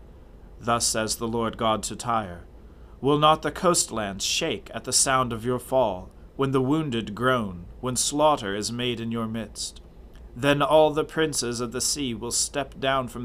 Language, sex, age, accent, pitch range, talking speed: English, male, 40-59, American, 95-135 Hz, 180 wpm